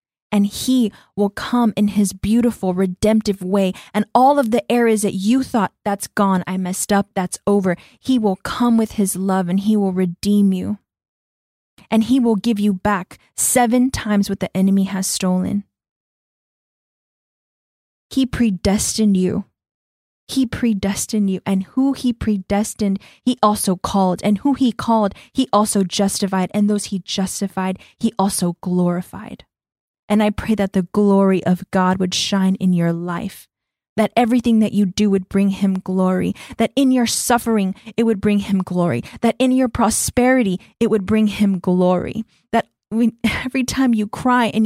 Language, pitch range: English, 190-225 Hz